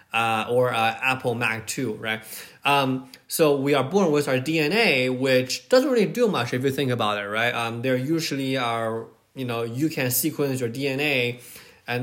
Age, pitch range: 20-39, 115-140 Hz